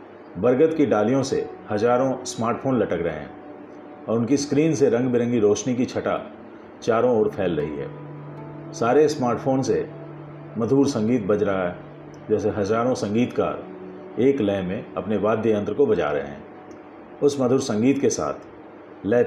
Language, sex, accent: Hindi, male, native